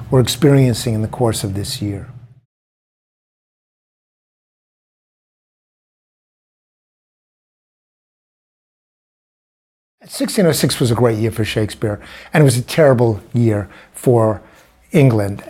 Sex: male